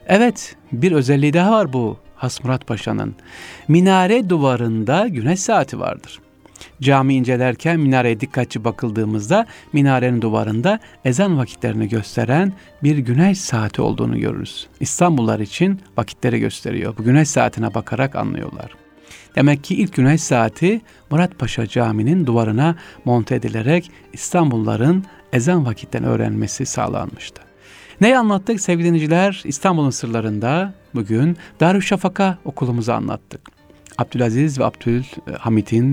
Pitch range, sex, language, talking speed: 115-160 Hz, male, Turkish, 110 wpm